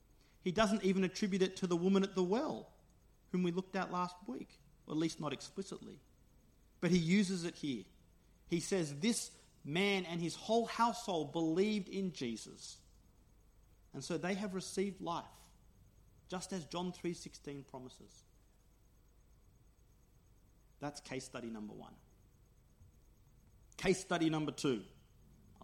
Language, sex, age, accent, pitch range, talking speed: English, male, 40-59, Australian, 135-185 Hz, 135 wpm